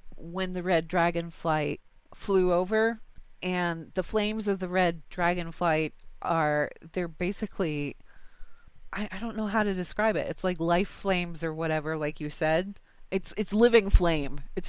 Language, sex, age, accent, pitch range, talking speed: English, female, 30-49, American, 165-205 Hz, 165 wpm